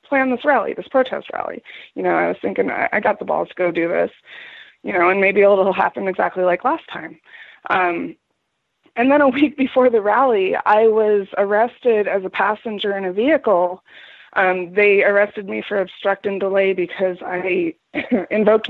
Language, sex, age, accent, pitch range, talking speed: English, female, 20-39, American, 175-210 Hz, 185 wpm